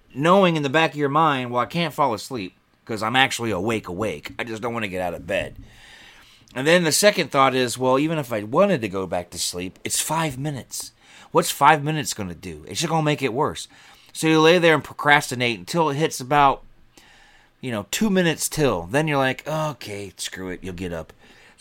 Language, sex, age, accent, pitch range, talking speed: English, male, 30-49, American, 100-135 Hz, 230 wpm